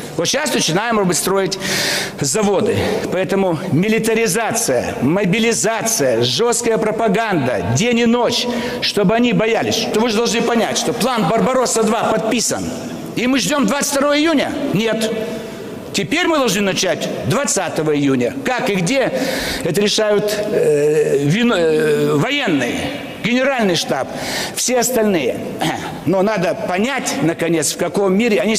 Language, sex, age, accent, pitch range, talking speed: Russian, male, 60-79, native, 205-255 Hz, 120 wpm